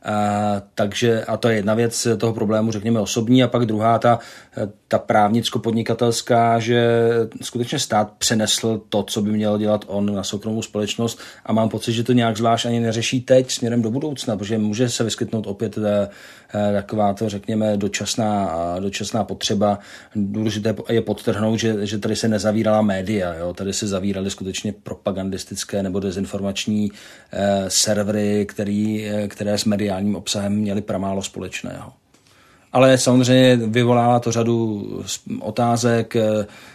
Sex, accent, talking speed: male, native, 140 wpm